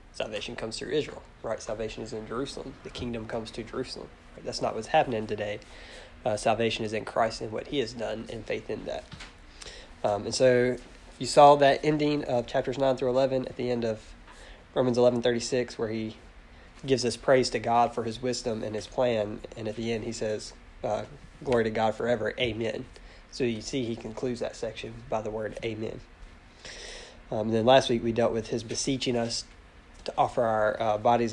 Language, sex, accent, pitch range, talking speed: English, male, American, 110-120 Hz, 200 wpm